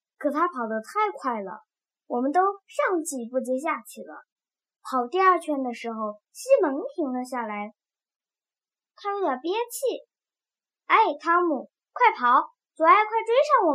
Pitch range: 260-380 Hz